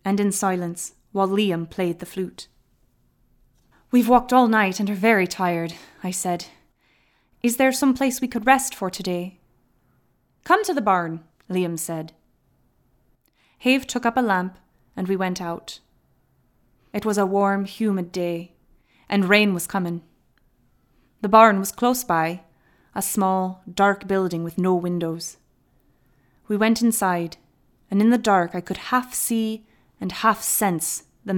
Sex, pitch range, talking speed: female, 165-210 Hz, 150 wpm